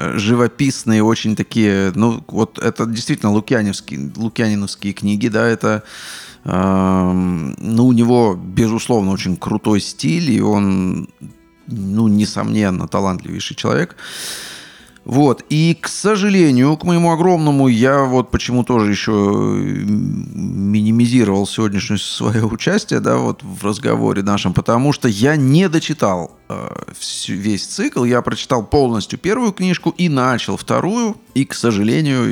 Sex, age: male, 30-49